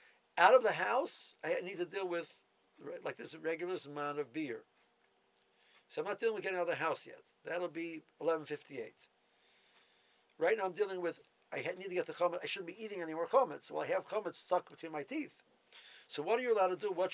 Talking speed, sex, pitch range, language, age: 225 wpm, male, 150-220 Hz, English, 50-69